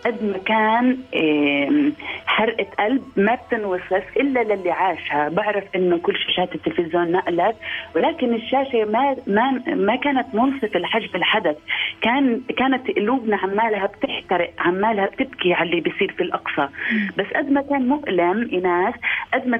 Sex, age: female, 30-49